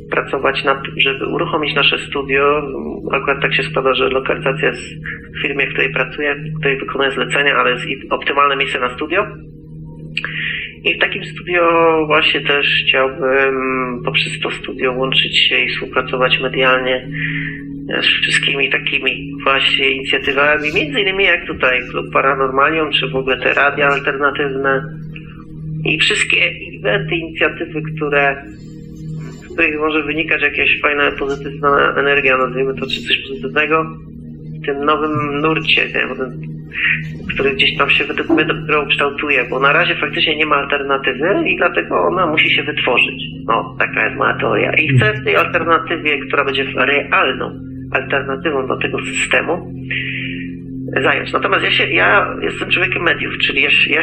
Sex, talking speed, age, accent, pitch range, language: male, 145 wpm, 40-59, native, 135-160 Hz, Polish